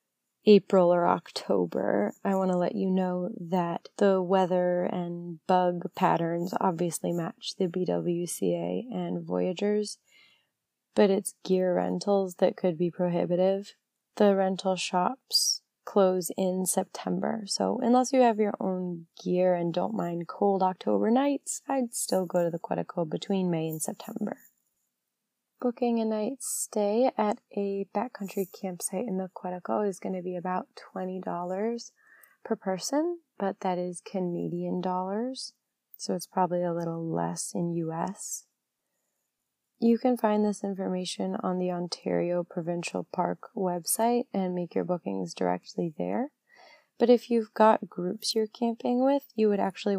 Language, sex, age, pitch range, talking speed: English, female, 20-39, 175-215 Hz, 140 wpm